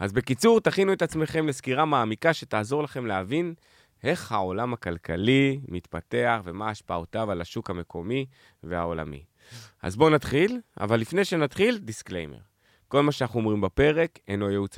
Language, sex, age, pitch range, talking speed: Hebrew, male, 20-39, 95-130 Hz, 140 wpm